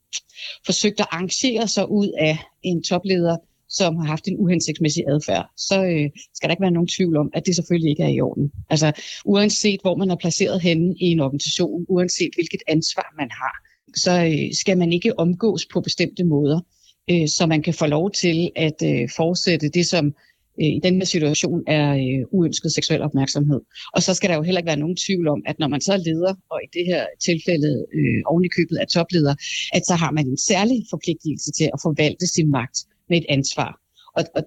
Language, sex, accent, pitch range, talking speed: Danish, female, native, 155-185 Hz, 205 wpm